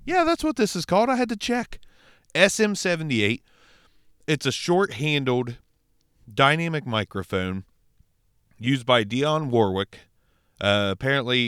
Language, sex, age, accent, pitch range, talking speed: English, male, 30-49, American, 110-145 Hz, 120 wpm